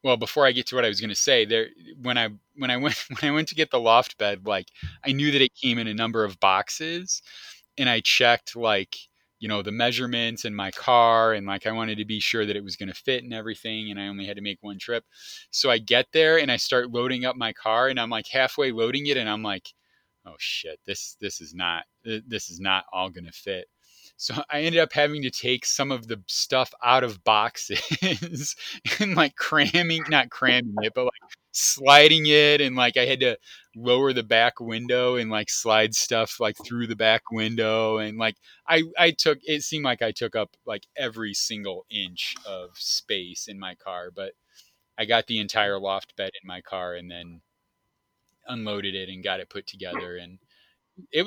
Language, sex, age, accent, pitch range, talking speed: English, male, 30-49, American, 105-135 Hz, 220 wpm